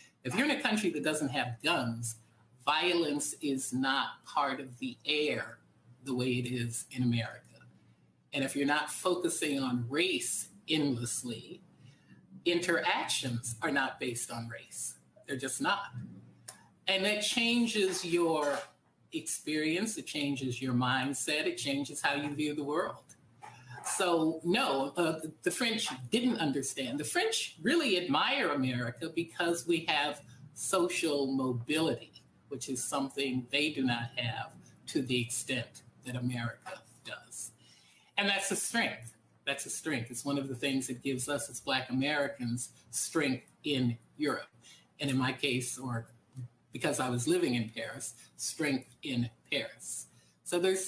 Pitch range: 125-160 Hz